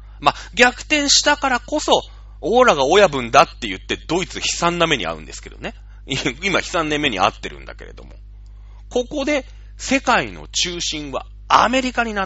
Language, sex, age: Japanese, male, 40-59